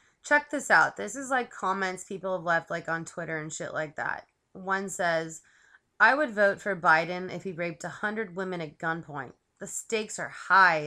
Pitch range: 175-210 Hz